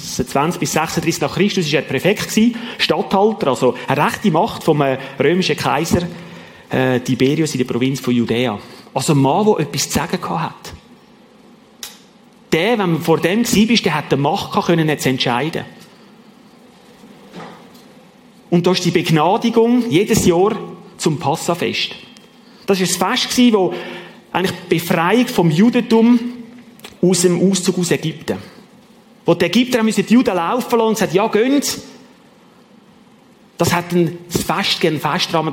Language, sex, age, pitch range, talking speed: German, male, 30-49, 155-225 Hz, 150 wpm